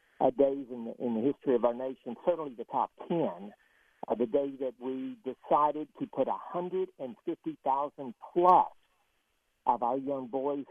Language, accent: English, American